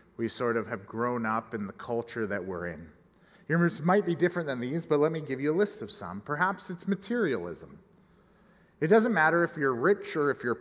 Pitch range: 135-180 Hz